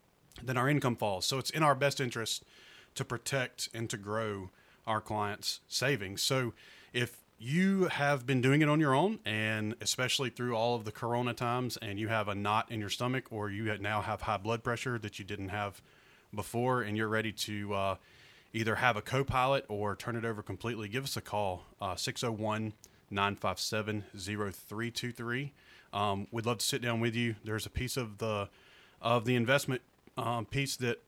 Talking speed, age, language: 185 wpm, 30-49, English